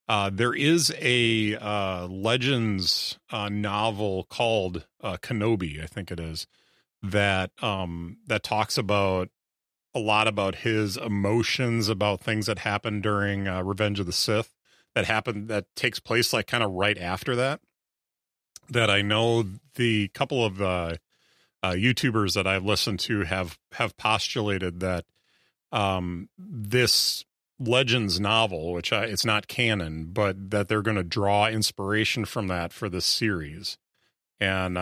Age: 30-49